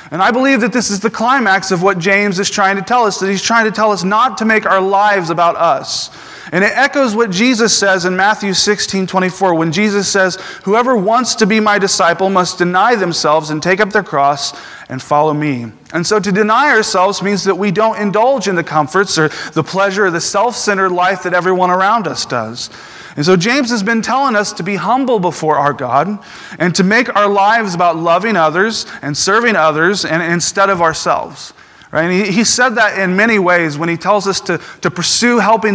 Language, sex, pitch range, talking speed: English, male, 170-215 Hz, 215 wpm